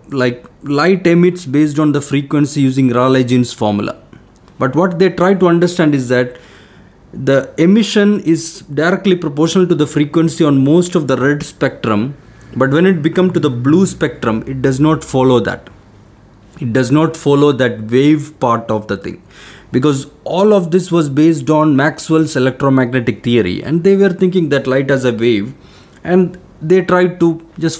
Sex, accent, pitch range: male, Indian, 125-165 Hz